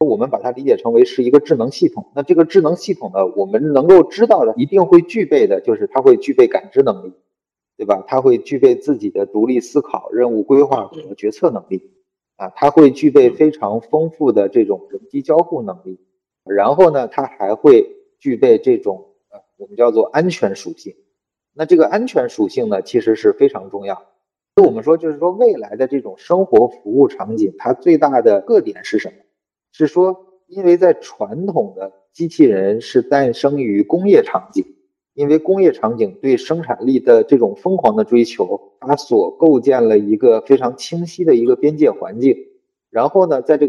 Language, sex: Chinese, male